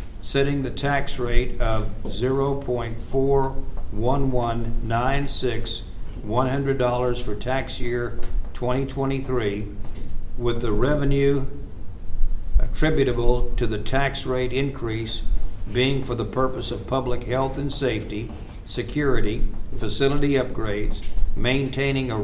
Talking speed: 90 wpm